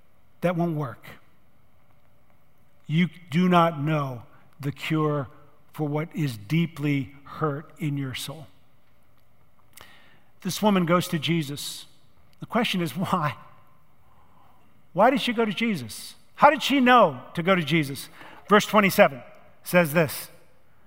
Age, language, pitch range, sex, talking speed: 50-69, English, 145-200 Hz, male, 125 wpm